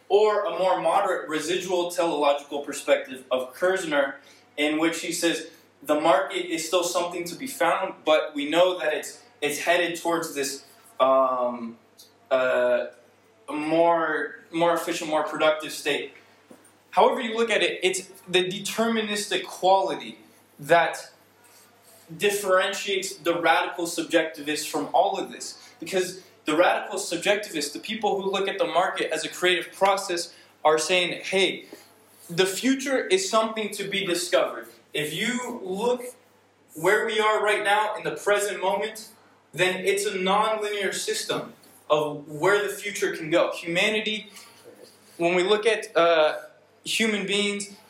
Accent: American